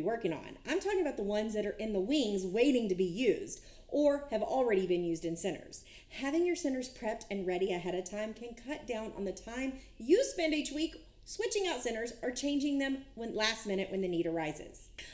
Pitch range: 200-305 Hz